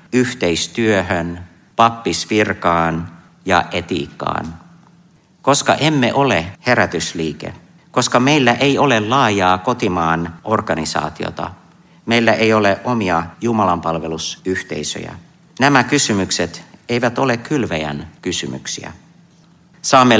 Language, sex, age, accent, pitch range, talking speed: Finnish, male, 50-69, native, 85-125 Hz, 80 wpm